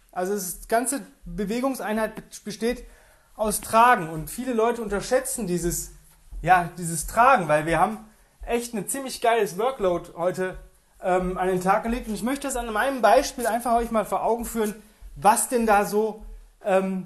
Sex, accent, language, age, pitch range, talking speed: male, German, German, 30-49, 175-220 Hz, 165 wpm